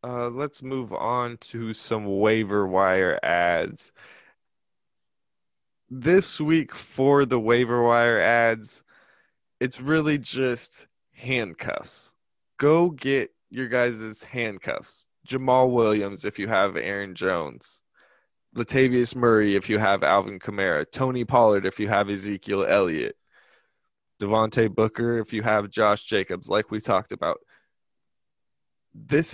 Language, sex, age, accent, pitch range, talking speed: English, male, 20-39, American, 110-145 Hz, 120 wpm